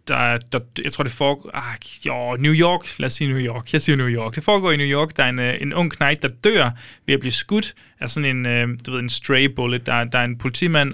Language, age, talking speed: Danish, 20-39, 275 wpm